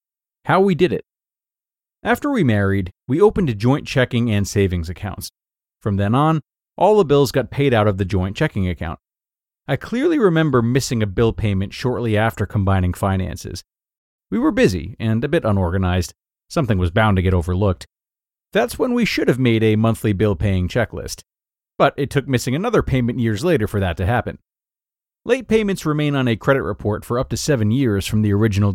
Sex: male